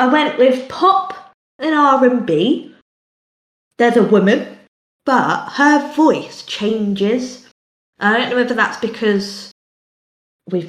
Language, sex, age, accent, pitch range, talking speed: English, female, 20-39, British, 160-225 Hz, 125 wpm